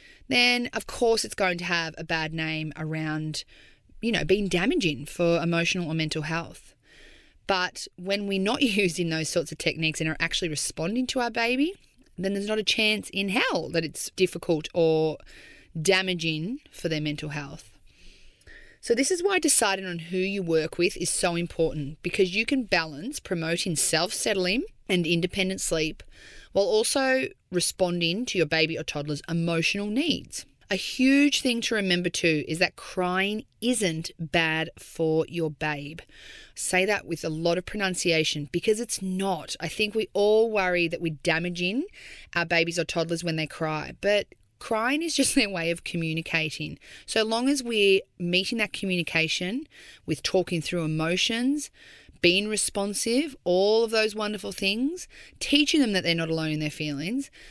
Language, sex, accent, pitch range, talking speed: English, female, Australian, 160-215 Hz, 165 wpm